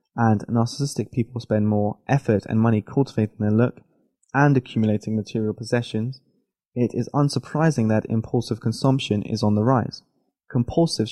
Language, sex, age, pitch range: Chinese, male, 20-39, 110-135 Hz